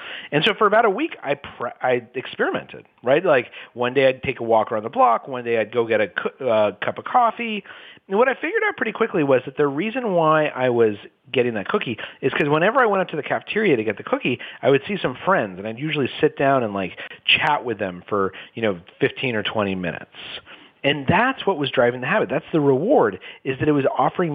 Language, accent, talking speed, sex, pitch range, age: English, American, 240 wpm, male, 120-170 Hz, 40-59